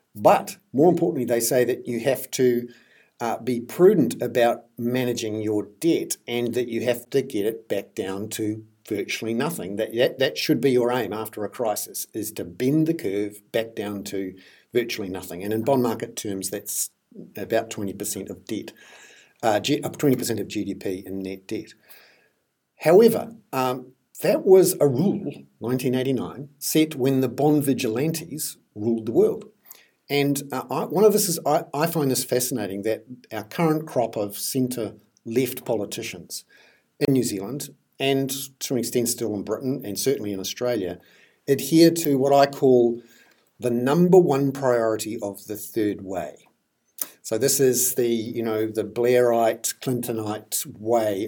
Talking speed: 155 wpm